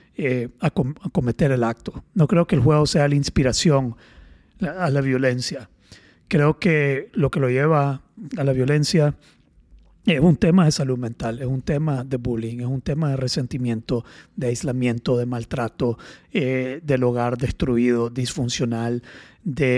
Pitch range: 120-150 Hz